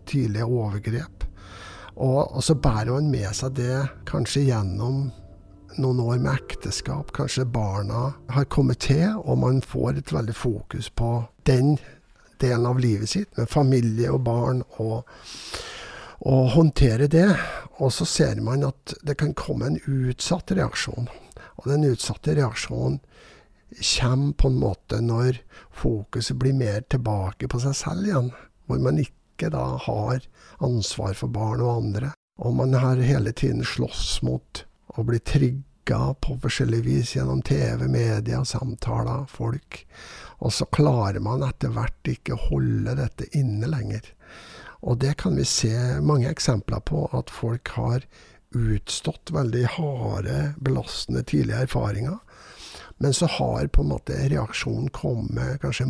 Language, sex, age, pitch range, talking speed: English, male, 60-79, 110-135 Hz, 145 wpm